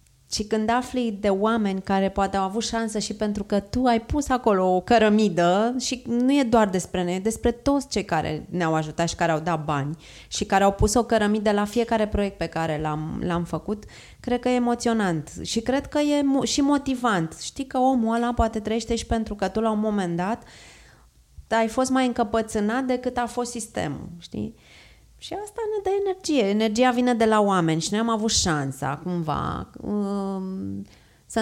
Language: Romanian